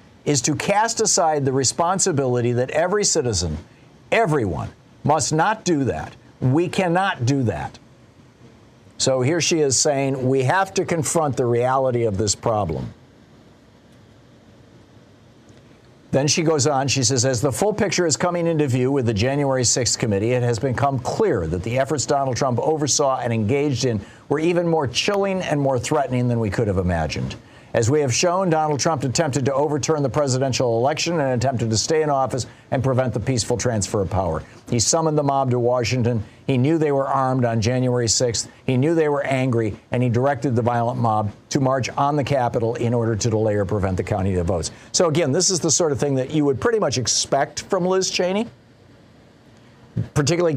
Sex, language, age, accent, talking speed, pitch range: male, English, 50-69, American, 190 wpm, 120-150 Hz